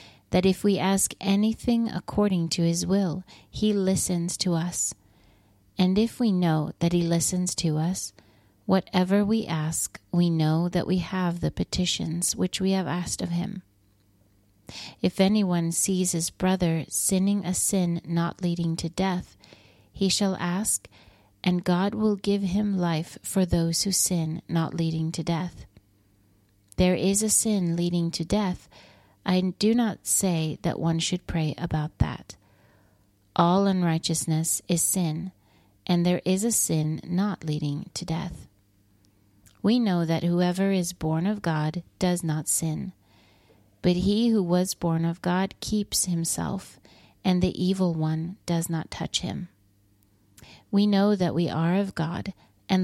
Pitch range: 155-190 Hz